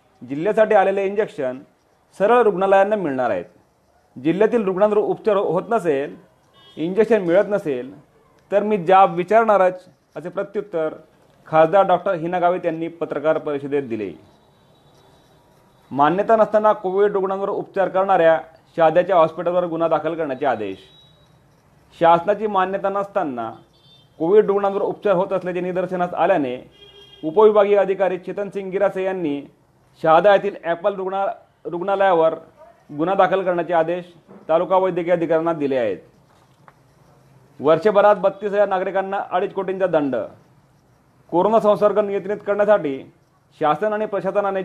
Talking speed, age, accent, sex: 110 wpm, 40-59, native, male